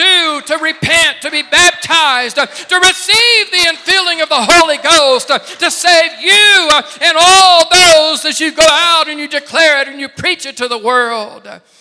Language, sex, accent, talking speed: English, male, American, 175 wpm